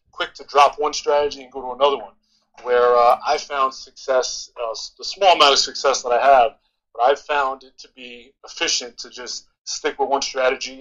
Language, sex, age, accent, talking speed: English, male, 30-49, American, 205 wpm